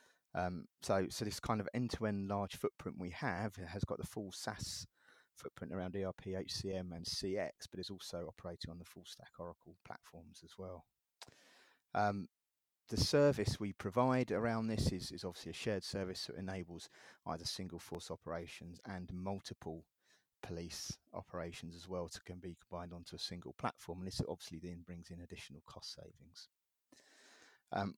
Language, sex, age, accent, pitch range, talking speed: English, male, 30-49, British, 90-100 Hz, 170 wpm